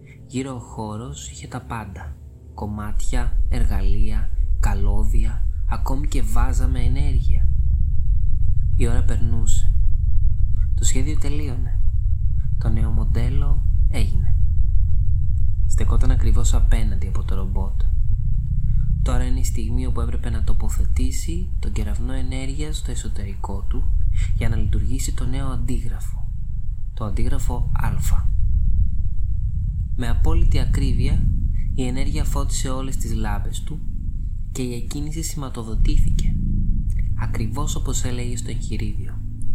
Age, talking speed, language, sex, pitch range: 20-39, 110 wpm, Greek, male, 85-105 Hz